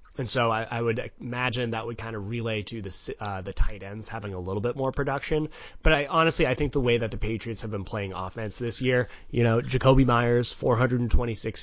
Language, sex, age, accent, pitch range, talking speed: English, male, 30-49, American, 100-125 Hz, 225 wpm